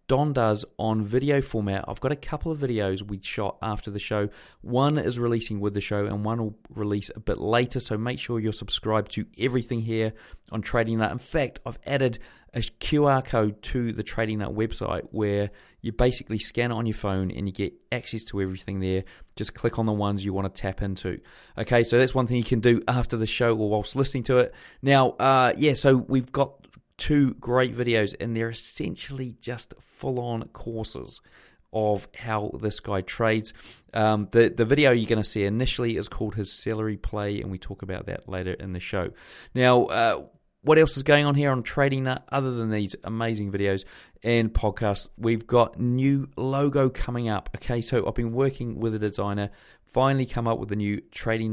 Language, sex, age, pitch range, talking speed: English, male, 20-39, 105-125 Hz, 205 wpm